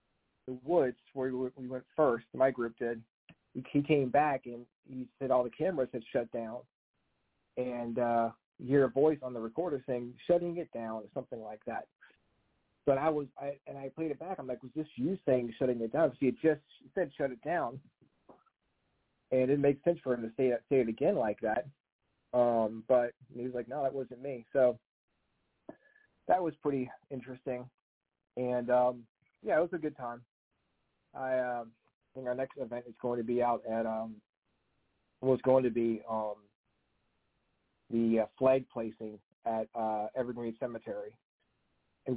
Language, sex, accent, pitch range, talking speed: English, male, American, 115-135 Hz, 180 wpm